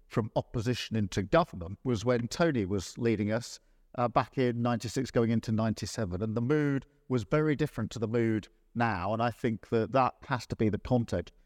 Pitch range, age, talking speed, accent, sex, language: 105-125 Hz, 50-69, 195 wpm, British, male, English